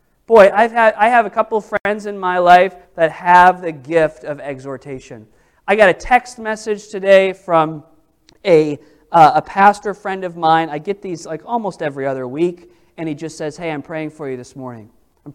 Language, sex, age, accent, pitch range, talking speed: English, male, 40-59, American, 165-255 Hz, 200 wpm